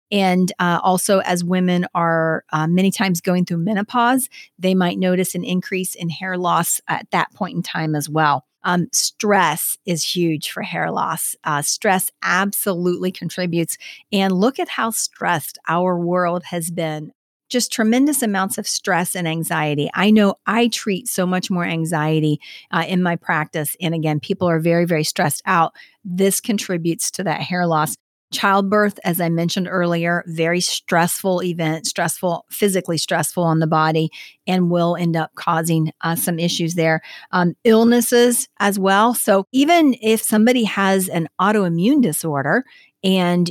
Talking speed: 160 wpm